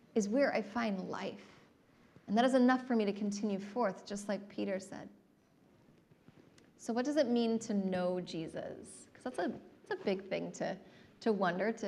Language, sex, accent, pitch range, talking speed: English, female, American, 205-260 Hz, 185 wpm